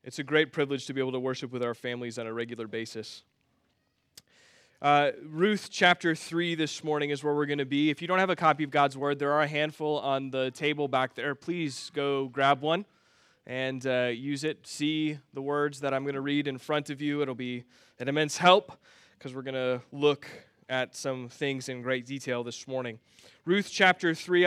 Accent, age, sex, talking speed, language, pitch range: American, 20-39, male, 215 wpm, English, 135-165 Hz